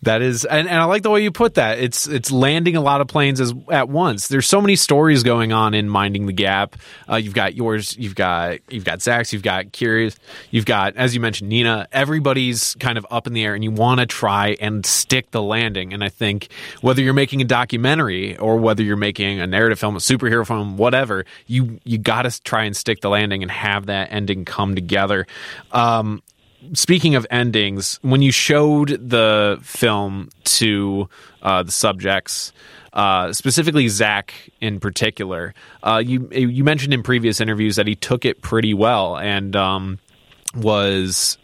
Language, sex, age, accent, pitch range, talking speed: English, male, 20-39, American, 100-125 Hz, 195 wpm